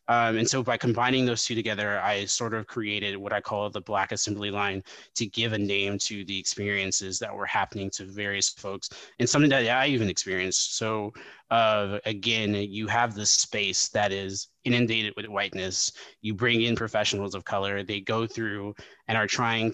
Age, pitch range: 20-39, 100-120 Hz